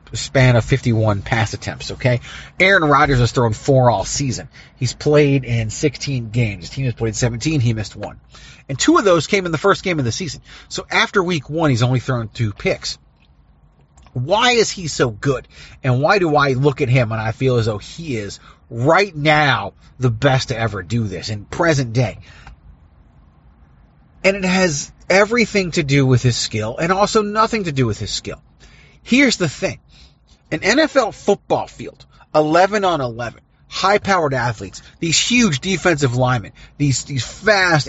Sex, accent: male, American